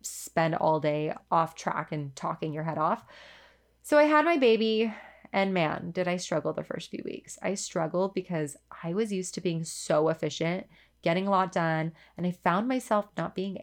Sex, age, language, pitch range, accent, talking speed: female, 20-39, English, 165-215 Hz, American, 195 wpm